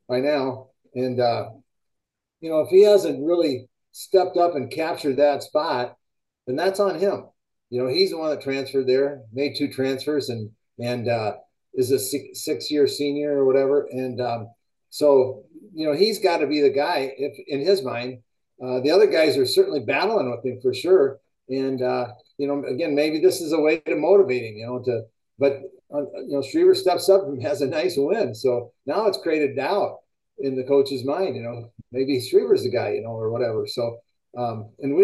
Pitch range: 125-160 Hz